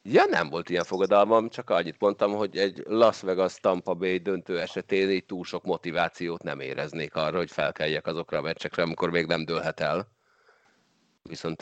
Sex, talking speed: male, 175 wpm